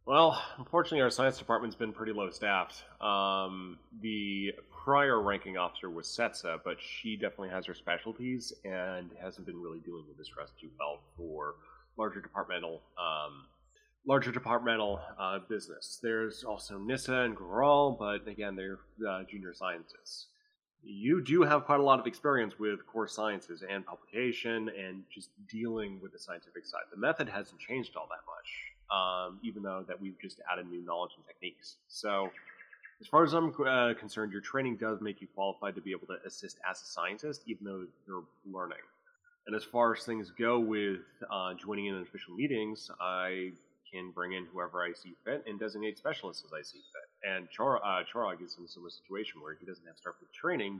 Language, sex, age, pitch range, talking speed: English, male, 30-49, 95-120 Hz, 185 wpm